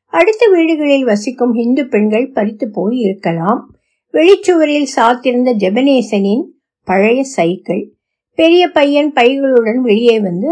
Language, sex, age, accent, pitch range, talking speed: Tamil, female, 60-79, native, 210-300 Hz, 70 wpm